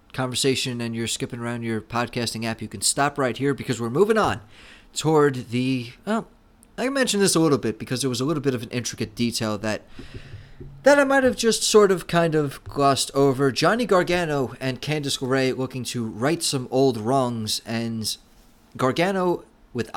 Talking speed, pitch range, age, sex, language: 185 wpm, 115-145 Hz, 30-49, male, English